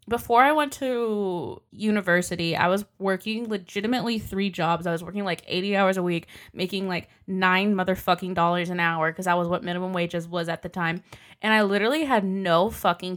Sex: female